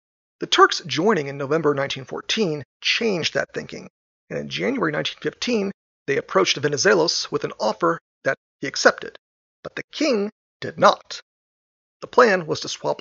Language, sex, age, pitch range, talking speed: English, male, 40-59, 145-200 Hz, 150 wpm